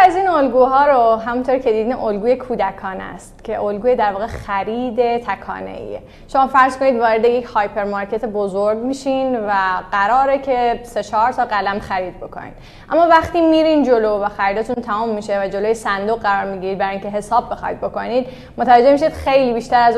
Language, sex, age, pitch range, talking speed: Persian, female, 10-29, 205-255 Hz, 170 wpm